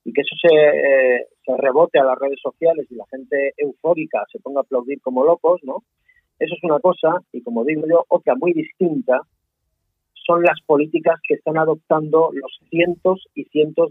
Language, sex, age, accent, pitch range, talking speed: Spanish, male, 40-59, Spanish, 140-175 Hz, 180 wpm